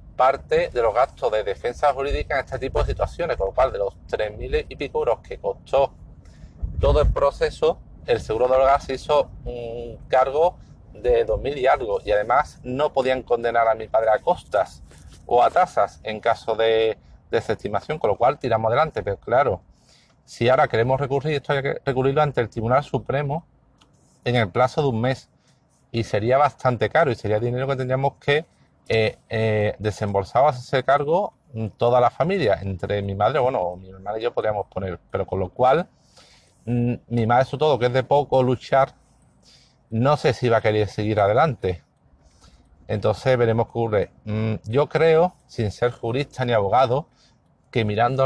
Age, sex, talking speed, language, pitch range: 40-59, male, 180 wpm, Spanish, 110-140 Hz